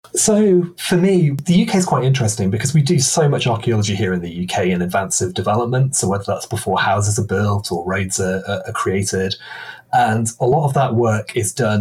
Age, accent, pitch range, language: 30-49, British, 100-125 Hz, English